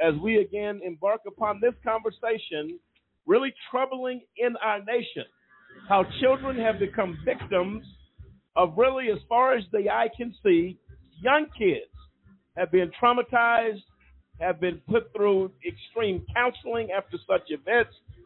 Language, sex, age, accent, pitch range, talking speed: English, male, 50-69, American, 180-235 Hz, 130 wpm